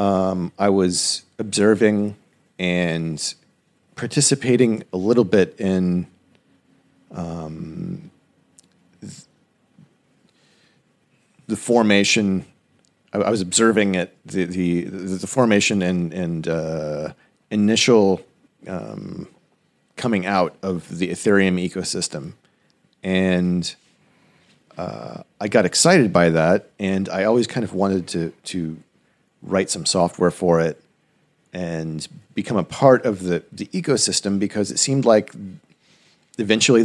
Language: English